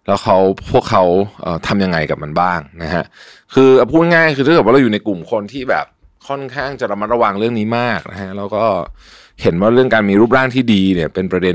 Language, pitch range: Thai, 85-115 Hz